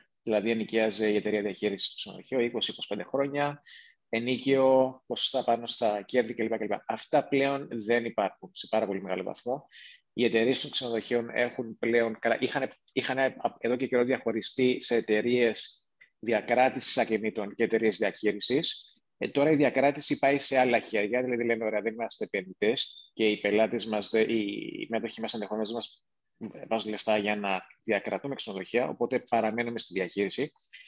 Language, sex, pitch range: Greek, male, 110-135 Hz